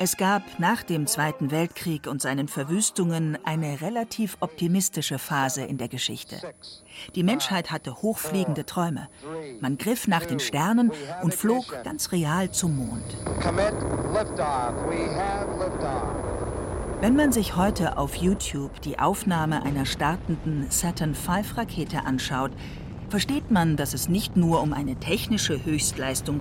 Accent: German